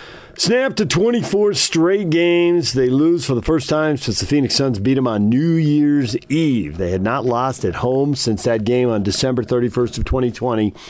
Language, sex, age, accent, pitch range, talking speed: English, male, 40-59, American, 110-155 Hz, 195 wpm